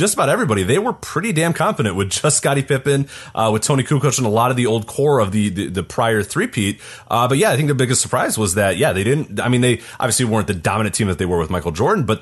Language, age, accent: English, 30-49, American